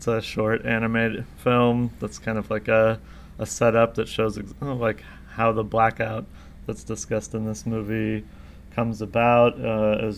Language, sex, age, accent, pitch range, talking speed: English, male, 20-39, American, 105-115 Hz, 170 wpm